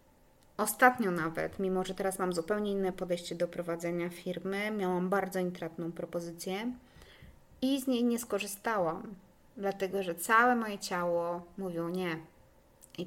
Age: 20-39